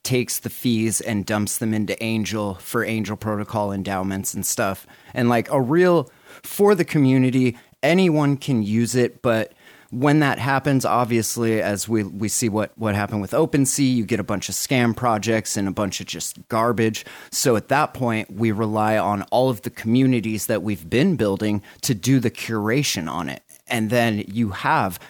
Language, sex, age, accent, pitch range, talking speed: English, male, 30-49, American, 105-130 Hz, 185 wpm